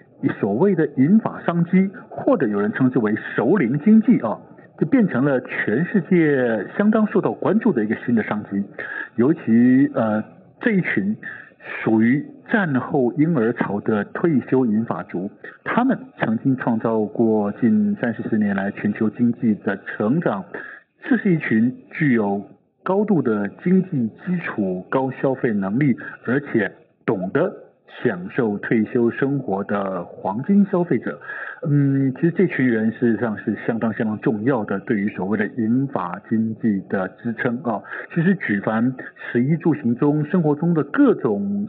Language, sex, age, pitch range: Chinese, male, 50-69, 110-185 Hz